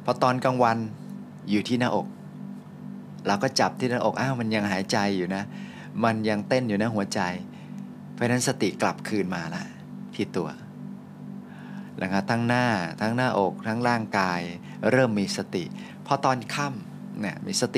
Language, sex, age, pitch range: Thai, male, 20-39, 100-130 Hz